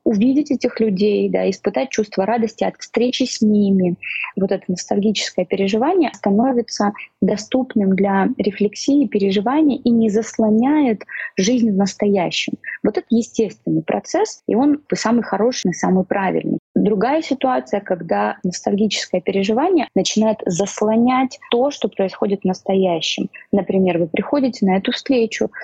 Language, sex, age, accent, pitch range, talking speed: Russian, female, 20-39, native, 175-230 Hz, 130 wpm